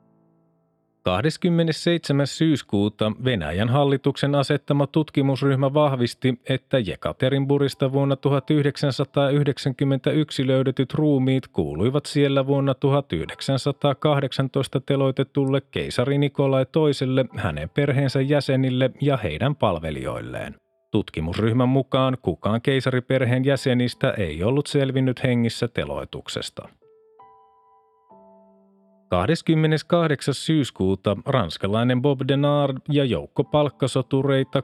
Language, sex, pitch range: Finnish, male, 125-145 Hz